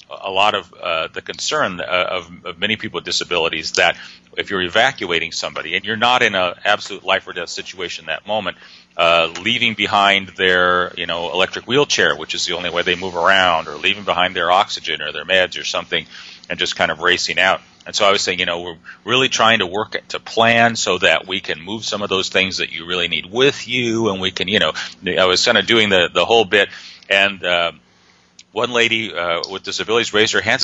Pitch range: 90-120 Hz